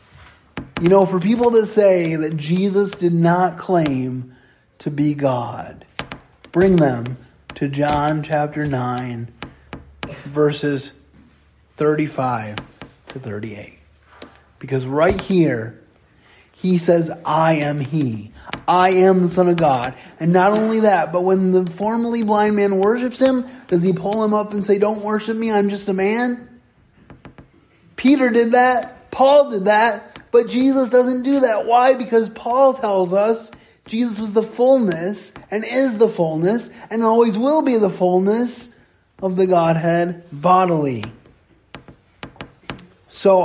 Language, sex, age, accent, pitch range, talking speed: English, male, 30-49, American, 145-210 Hz, 135 wpm